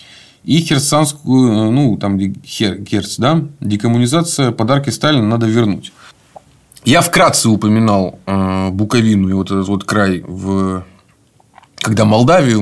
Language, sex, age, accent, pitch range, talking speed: Russian, male, 30-49, native, 100-145 Hz, 105 wpm